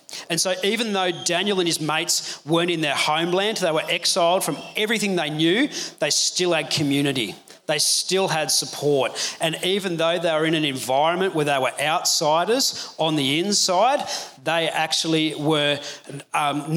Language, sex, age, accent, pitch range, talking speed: English, male, 30-49, Australian, 145-170 Hz, 165 wpm